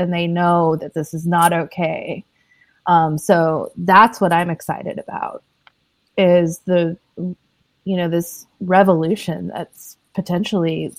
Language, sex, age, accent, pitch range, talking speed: English, female, 20-39, American, 175-205 Hz, 125 wpm